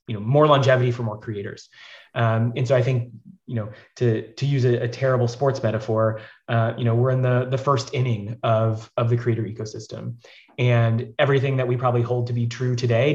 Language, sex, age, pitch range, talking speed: English, male, 20-39, 115-130 Hz, 210 wpm